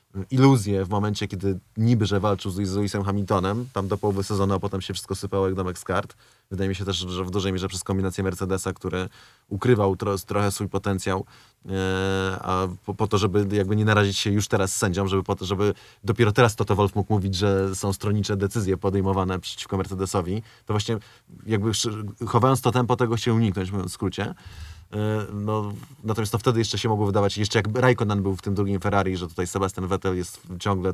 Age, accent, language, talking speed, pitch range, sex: 20-39, native, Polish, 200 wpm, 95-110 Hz, male